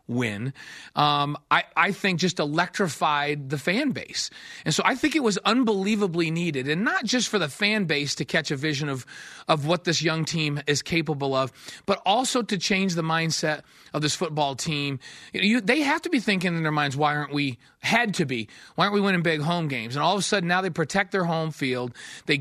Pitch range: 145-205 Hz